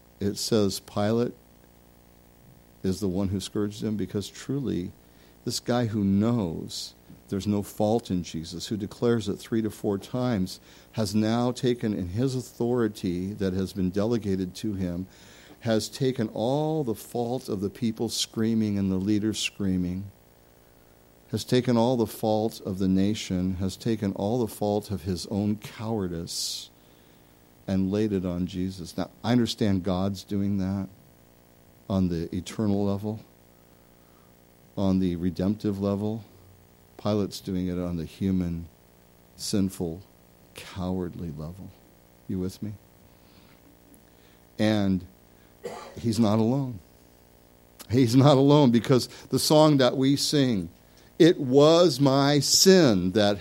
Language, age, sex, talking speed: English, 50-69, male, 135 wpm